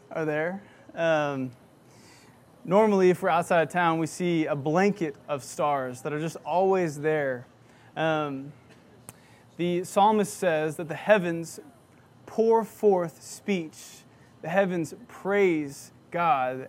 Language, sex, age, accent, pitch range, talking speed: English, male, 20-39, American, 145-195 Hz, 120 wpm